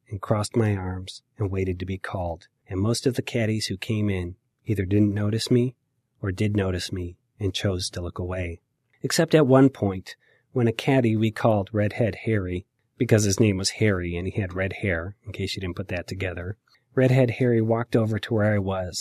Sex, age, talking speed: male, 30-49, 210 wpm